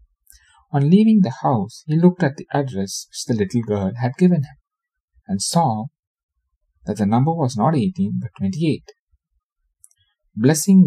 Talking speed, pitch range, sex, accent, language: 150 wpm, 105-145 Hz, male, Indian, English